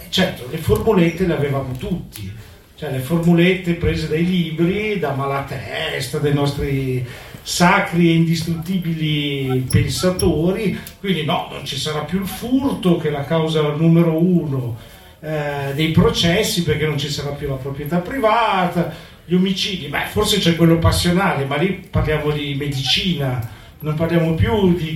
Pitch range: 140-185 Hz